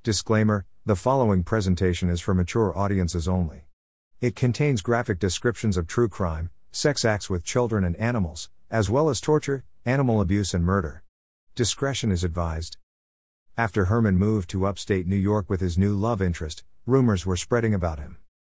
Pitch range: 90-115 Hz